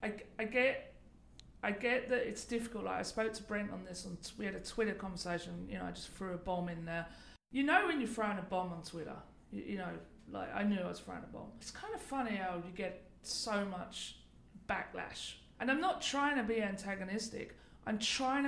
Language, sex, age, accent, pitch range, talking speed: English, female, 40-59, British, 185-230 Hz, 225 wpm